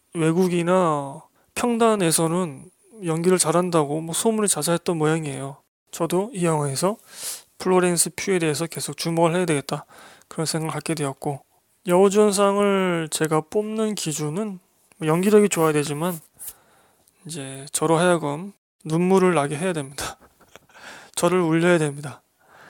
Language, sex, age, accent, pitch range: Korean, male, 20-39, native, 155-195 Hz